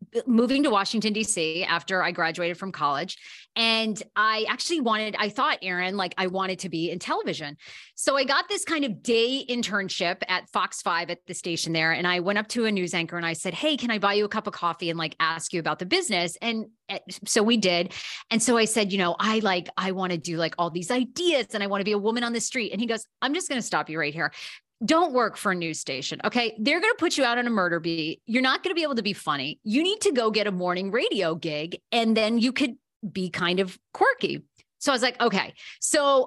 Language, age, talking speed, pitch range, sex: English, 30-49, 255 wpm, 180-235 Hz, female